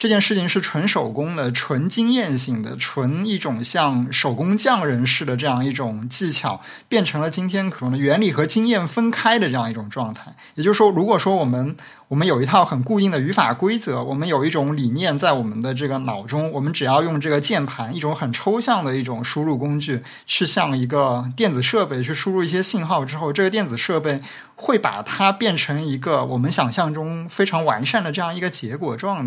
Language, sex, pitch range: Chinese, male, 130-185 Hz